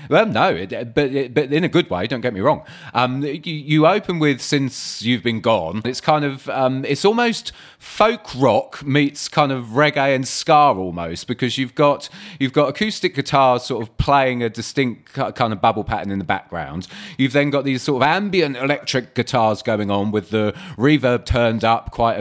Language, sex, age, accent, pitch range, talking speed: English, male, 30-49, British, 110-145 Hz, 200 wpm